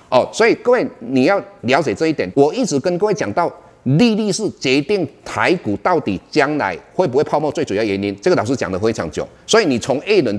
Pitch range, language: 105-160 Hz, Chinese